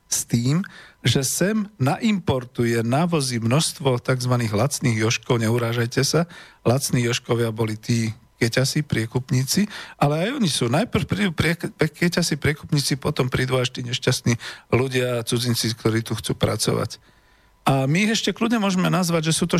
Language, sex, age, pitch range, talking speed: Slovak, male, 40-59, 115-145 Hz, 145 wpm